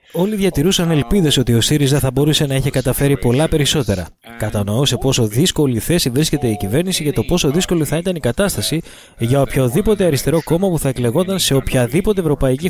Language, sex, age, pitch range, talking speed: English, male, 20-39, 120-160 Hz, 185 wpm